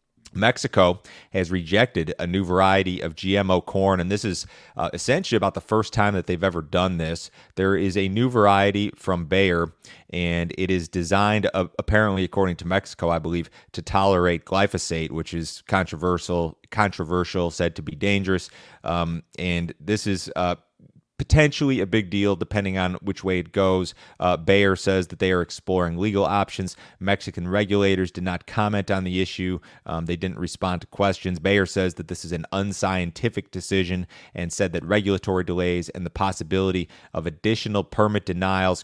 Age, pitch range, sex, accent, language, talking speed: 30-49, 90-100 Hz, male, American, English, 170 wpm